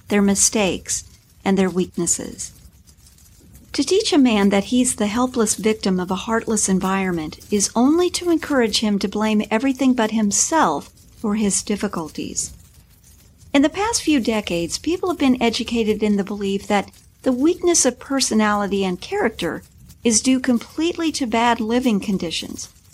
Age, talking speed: 50-69, 150 wpm